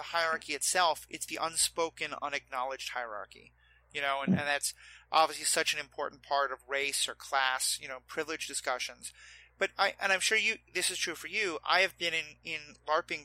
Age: 30-49